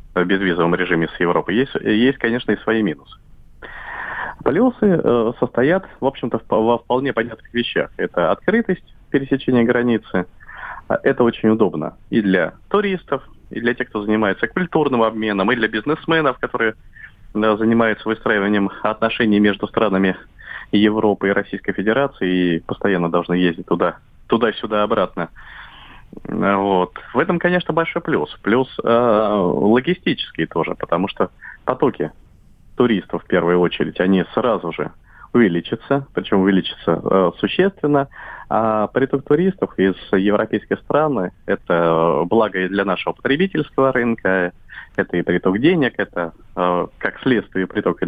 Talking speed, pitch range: 135 wpm, 95-130 Hz